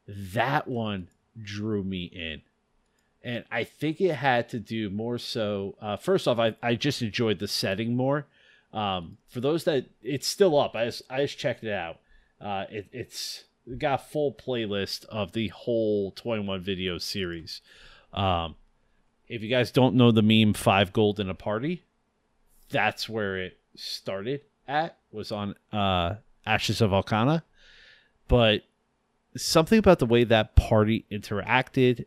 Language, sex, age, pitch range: English, male, 30-49, 95-125 Hz